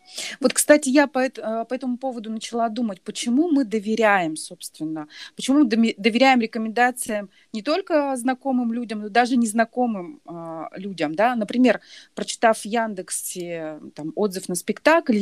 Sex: female